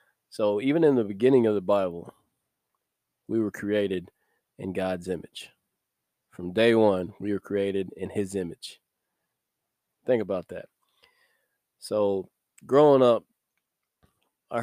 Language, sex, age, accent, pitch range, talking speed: English, male, 20-39, American, 100-120 Hz, 125 wpm